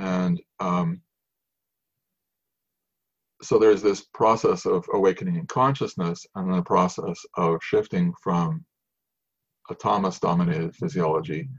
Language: English